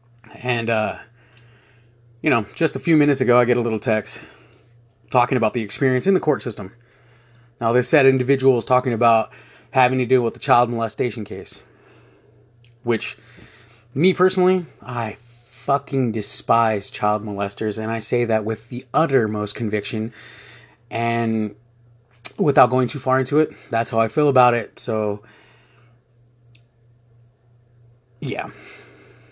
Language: English